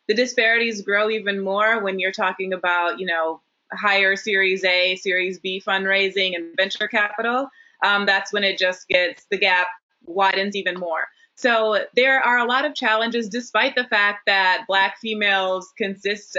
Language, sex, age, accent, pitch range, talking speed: English, female, 20-39, American, 195-235 Hz, 165 wpm